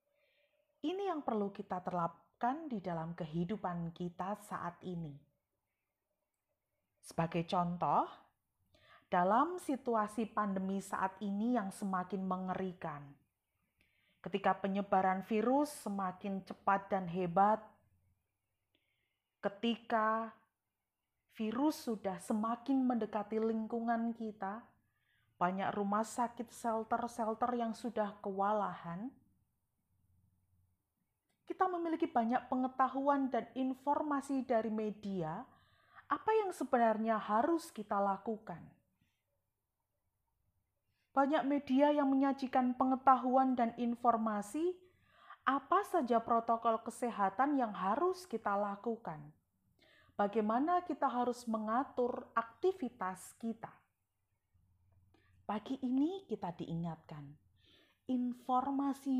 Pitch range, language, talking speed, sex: 180-255 Hz, Indonesian, 85 wpm, female